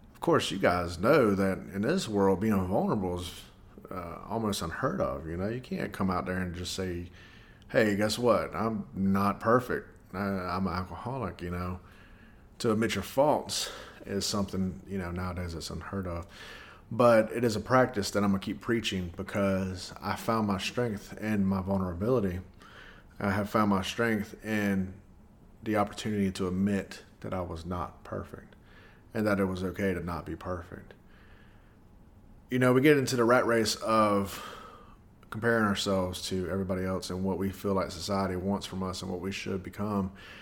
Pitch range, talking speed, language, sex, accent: 95-110 Hz, 180 wpm, English, male, American